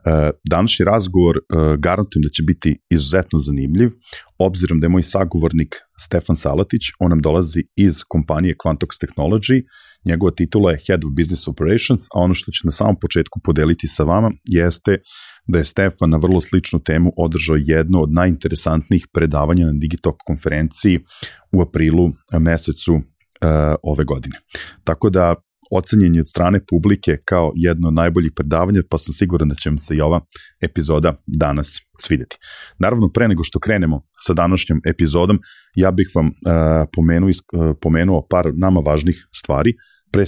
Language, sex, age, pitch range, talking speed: English, male, 40-59, 80-95 Hz, 150 wpm